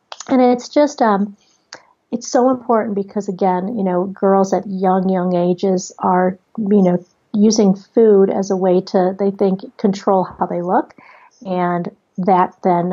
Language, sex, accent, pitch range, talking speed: English, female, American, 185-220 Hz, 160 wpm